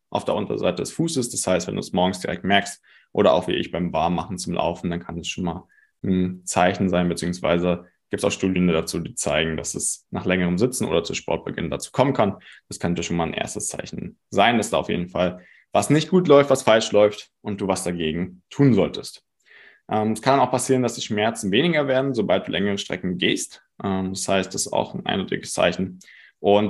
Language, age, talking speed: German, 20-39, 225 wpm